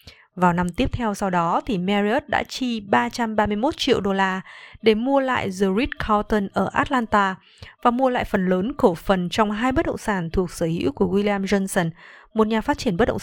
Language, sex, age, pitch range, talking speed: Vietnamese, female, 20-39, 185-225 Hz, 210 wpm